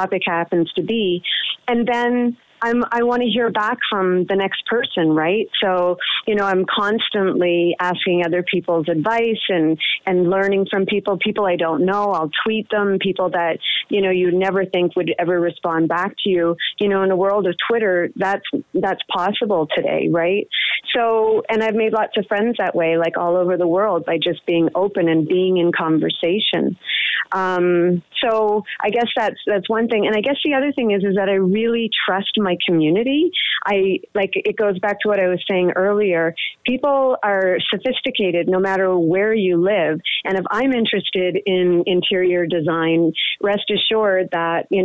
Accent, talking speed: American, 180 wpm